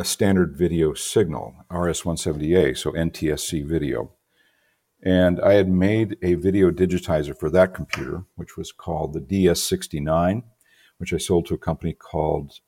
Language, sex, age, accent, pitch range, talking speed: English, male, 50-69, American, 80-95 Hz, 135 wpm